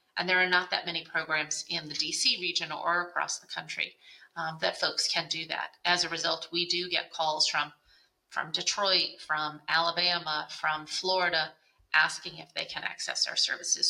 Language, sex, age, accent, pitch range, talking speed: English, female, 30-49, American, 155-180 Hz, 180 wpm